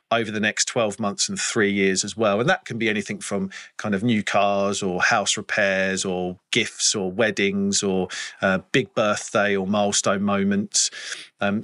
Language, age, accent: English, 40-59, British